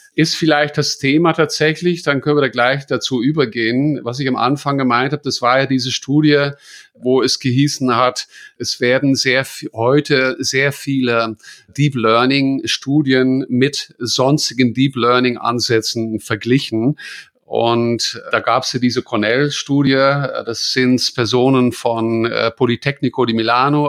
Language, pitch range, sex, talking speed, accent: English, 120-140 Hz, male, 140 wpm, German